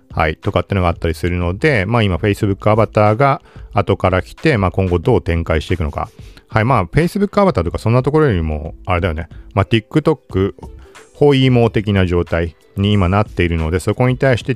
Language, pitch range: Japanese, 85-125 Hz